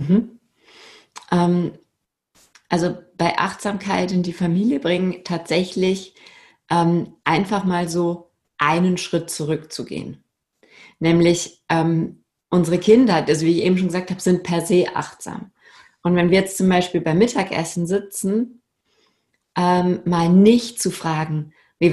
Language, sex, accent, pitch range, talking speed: German, female, German, 160-205 Hz, 130 wpm